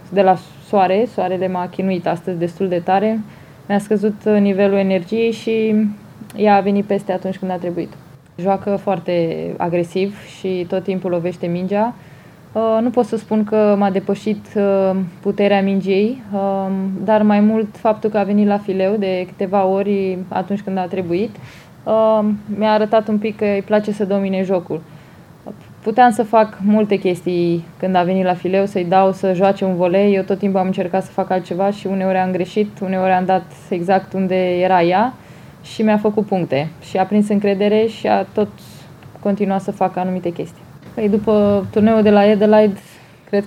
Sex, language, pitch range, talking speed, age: female, Romanian, 180-205 Hz, 170 wpm, 20-39